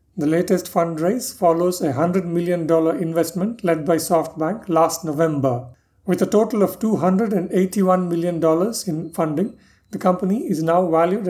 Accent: Indian